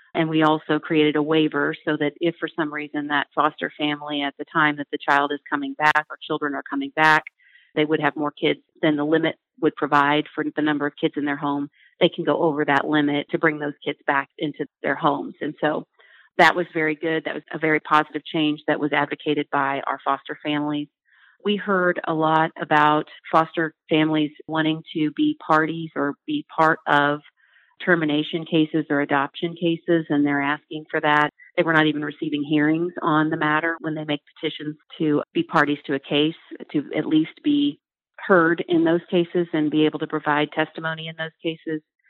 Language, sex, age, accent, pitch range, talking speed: English, female, 40-59, American, 150-160 Hz, 200 wpm